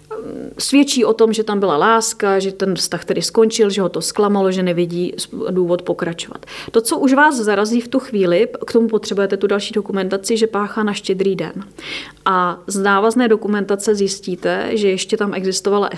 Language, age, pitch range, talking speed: Czech, 30-49, 185-220 Hz, 180 wpm